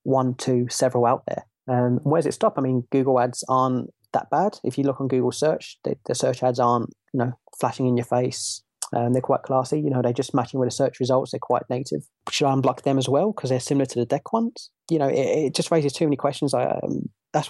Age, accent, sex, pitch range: 20-39, British, male, 120-140 Hz